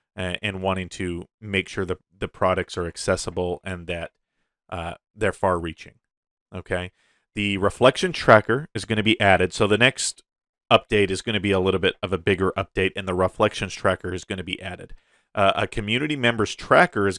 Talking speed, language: 190 wpm, English